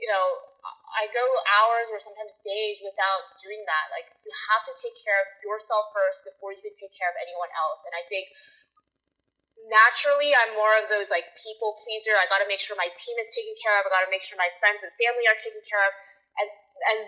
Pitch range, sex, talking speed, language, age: 190-245 Hz, female, 230 wpm, English, 20-39